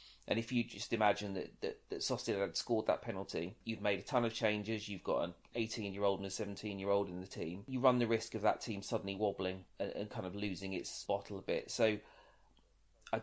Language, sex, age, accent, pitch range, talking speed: English, male, 30-49, British, 95-115 Hz, 215 wpm